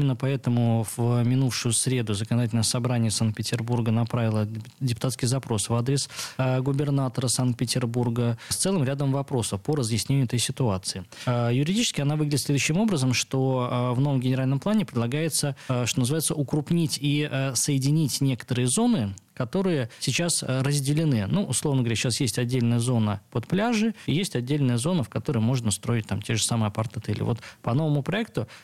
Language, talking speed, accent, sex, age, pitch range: Russian, 145 wpm, native, male, 20-39, 120-145 Hz